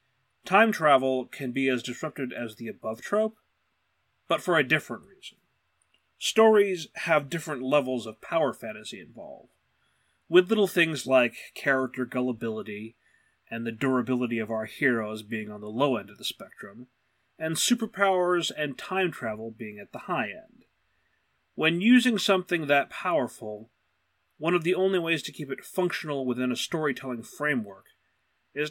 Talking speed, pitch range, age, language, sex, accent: 150 wpm, 120-170 Hz, 30-49, English, male, American